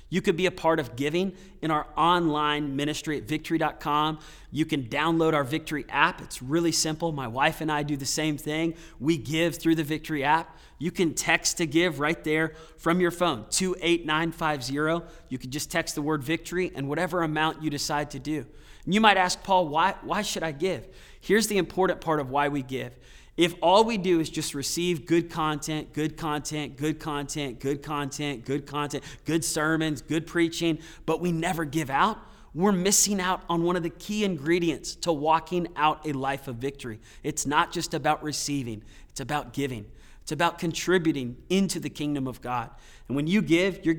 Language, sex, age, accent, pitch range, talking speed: English, male, 20-39, American, 145-170 Hz, 190 wpm